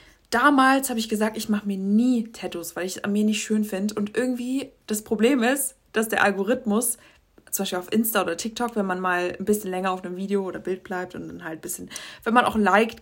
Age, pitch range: 20-39, 185-220 Hz